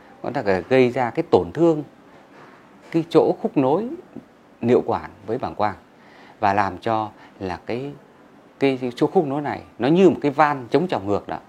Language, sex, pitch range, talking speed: Vietnamese, male, 110-155 Hz, 170 wpm